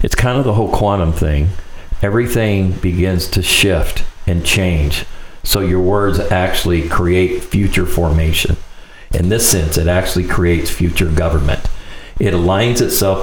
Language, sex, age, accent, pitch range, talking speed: English, male, 50-69, American, 85-100 Hz, 140 wpm